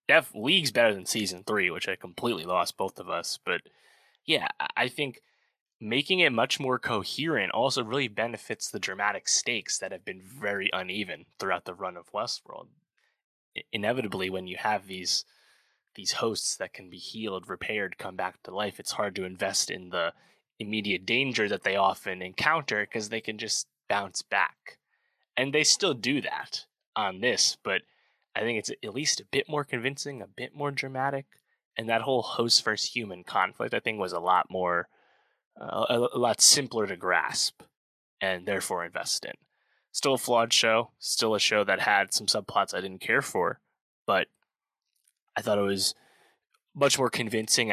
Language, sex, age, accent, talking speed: English, male, 20-39, American, 175 wpm